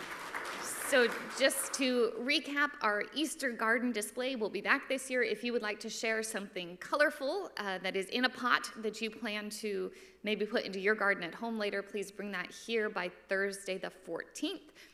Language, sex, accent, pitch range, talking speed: English, female, American, 190-245 Hz, 190 wpm